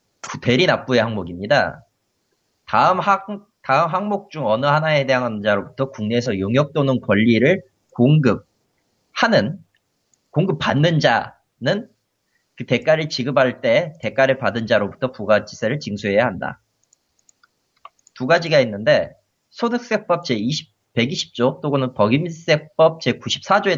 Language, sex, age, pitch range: Korean, male, 30-49, 125-175 Hz